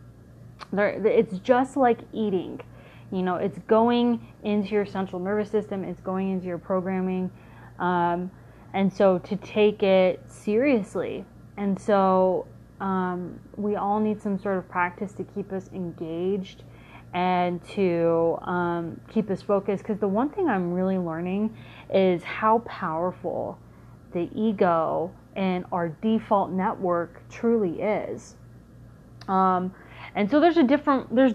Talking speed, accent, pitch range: 135 wpm, American, 180-210 Hz